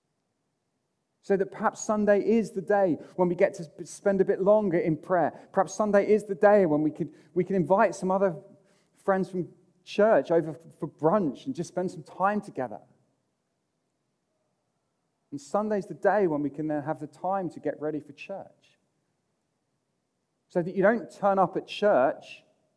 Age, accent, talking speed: 30-49, British, 175 wpm